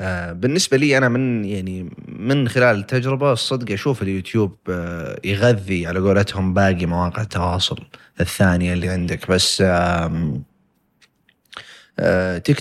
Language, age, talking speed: Arabic, 30-49, 105 wpm